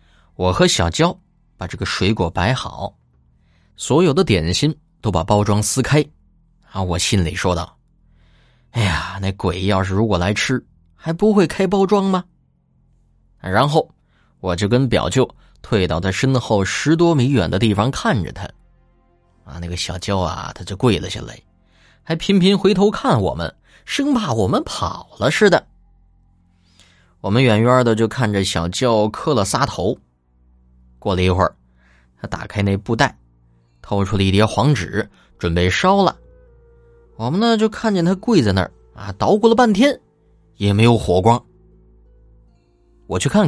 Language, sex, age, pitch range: Chinese, male, 20-39, 85-140 Hz